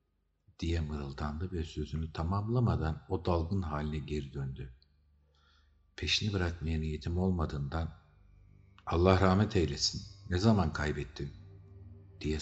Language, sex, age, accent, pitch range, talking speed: Turkish, male, 50-69, native, 75-95 Hz, 100 wpm